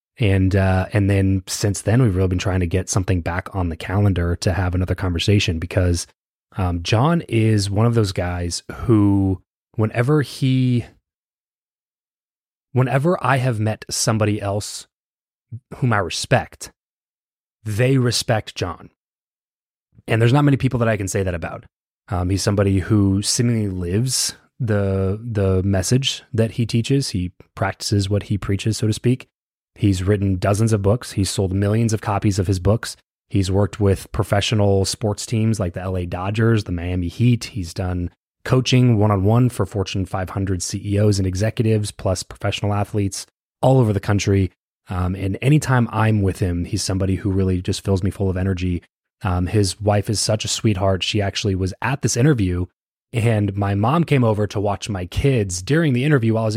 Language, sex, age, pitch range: English, male, 20-39, 95-115 Hz